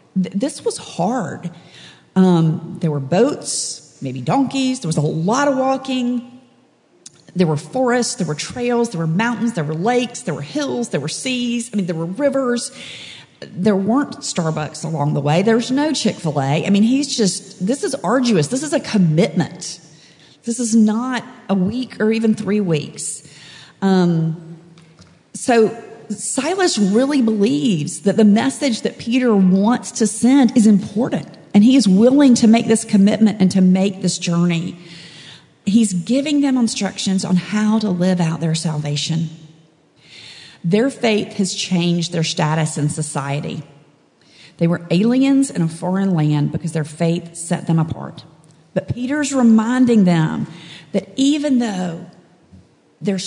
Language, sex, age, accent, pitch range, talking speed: English, female, 40-59, American, 165-240 Hz, 155 wpm